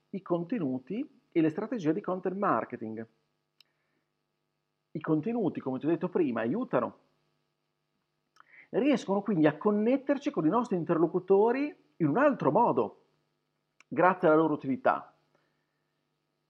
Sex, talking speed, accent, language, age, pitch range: male, 115 wpm, native, Italian, 50-69, 145-230 Hz